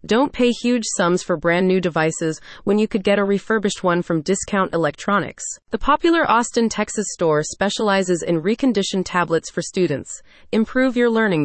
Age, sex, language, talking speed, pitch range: 30-49, female, English, 170 wpm, 170-220 Hz